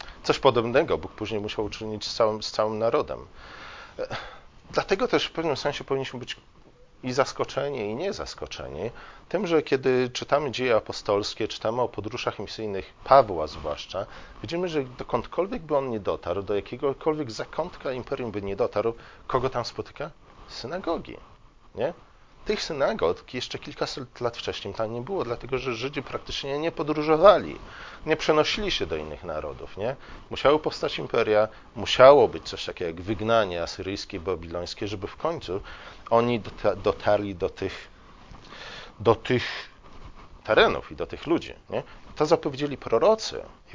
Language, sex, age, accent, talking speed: Polish, male, 40-59, native, 145 wpm